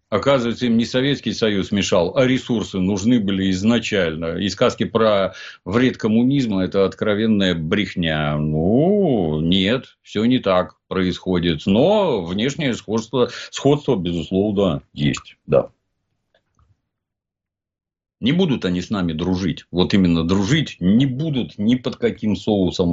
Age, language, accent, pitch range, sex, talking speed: 50-69, Russian, native, 95-125 Hz, male, 125 wpm